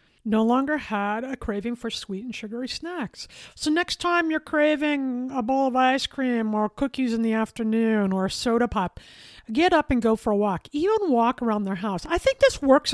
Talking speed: 210 wpm